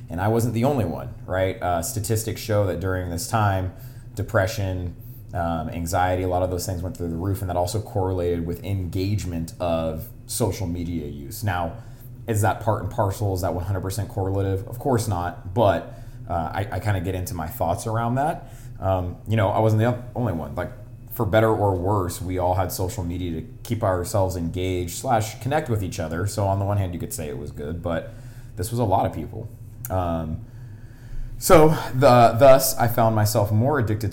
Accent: American